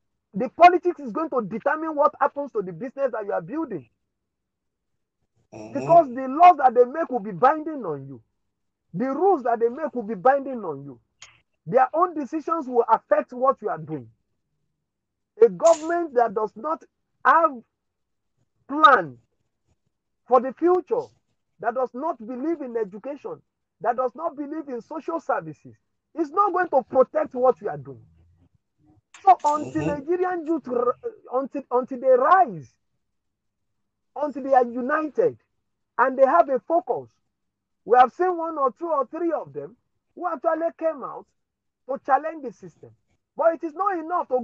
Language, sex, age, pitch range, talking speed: English, male, 50-69, 210-330 Hz, 160 wpm